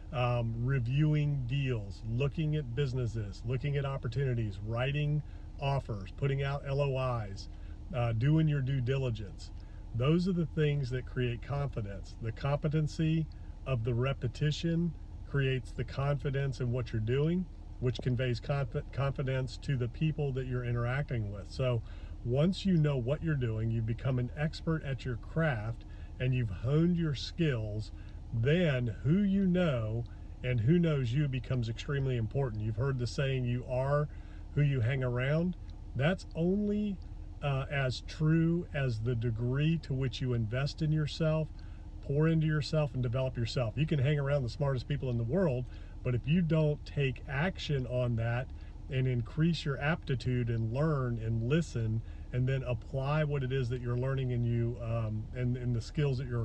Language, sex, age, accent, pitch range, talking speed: English, male, 40-59, American, 115-145 Hz, 160 wpm